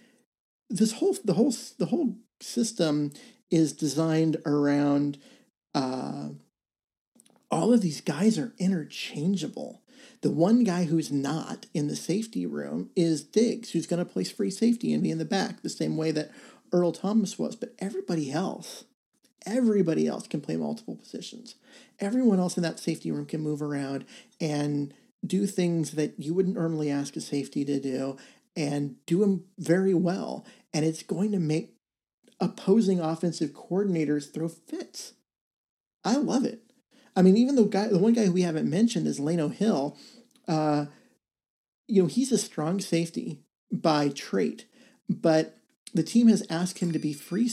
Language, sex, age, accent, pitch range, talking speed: English, male, 40-59, American, 155-220 Hz, 160 wpm